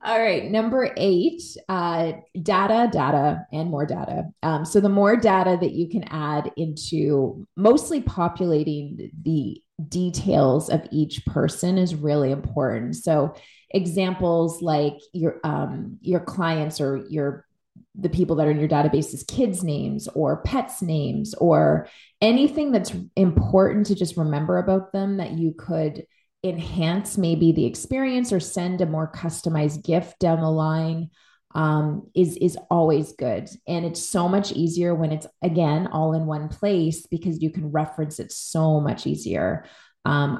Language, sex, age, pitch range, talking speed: English, female, 30-49, 155-185 Hz, 150 wpm